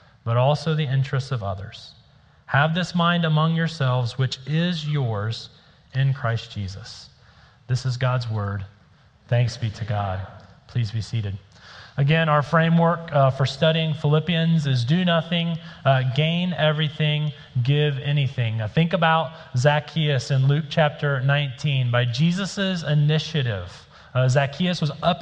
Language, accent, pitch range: English, American, 130-160 Hz